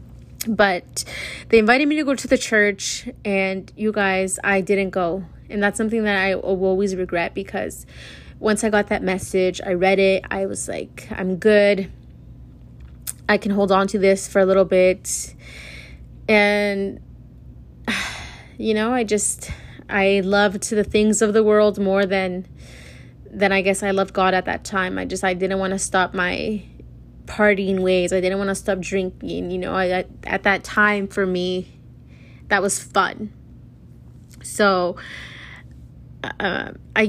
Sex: female